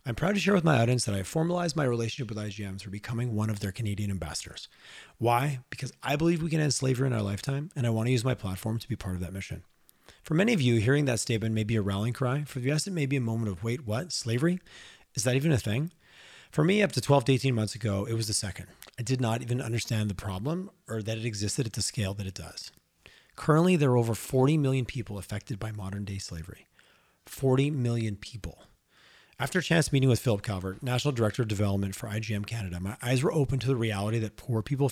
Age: 30-49